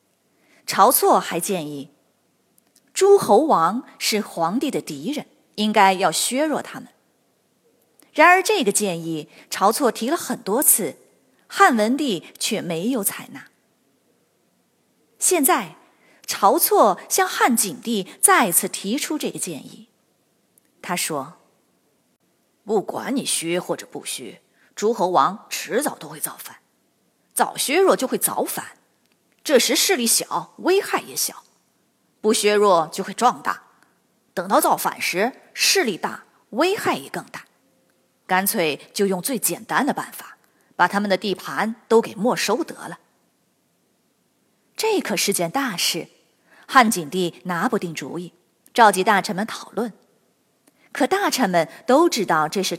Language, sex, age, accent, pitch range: Chinese, female, 20-39, native, 180-270 Hz